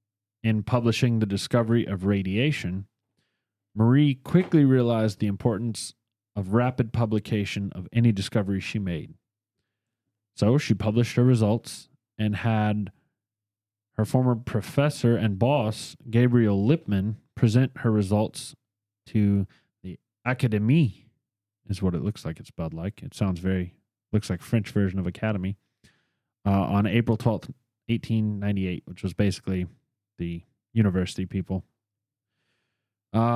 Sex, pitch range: male, 105-120 Hz